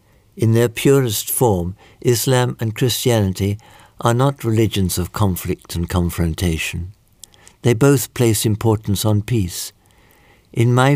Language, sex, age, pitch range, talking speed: English, male, 60-79, 100-120 Hz, 120 wpm